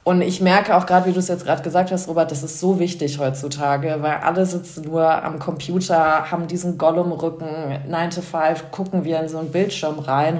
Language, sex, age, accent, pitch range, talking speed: German, female, 20-39, German, 155-180 Hz, 215 wpm